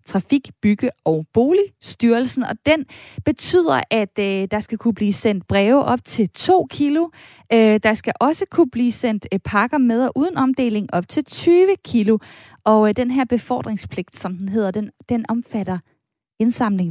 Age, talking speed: 20-39, 170 wpm